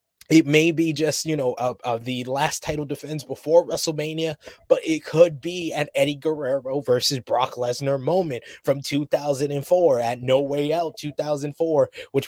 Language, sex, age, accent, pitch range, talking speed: English, male, 20-39, American, 140-165 Hz, 160 wpm